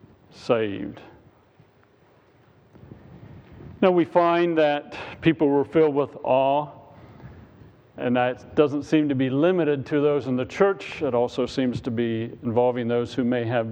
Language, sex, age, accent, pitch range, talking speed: English, male, 50-69, American, 130-165 Hz, 140 wpm